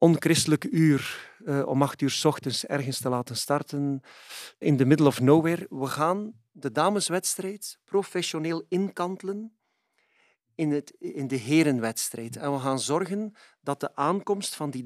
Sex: male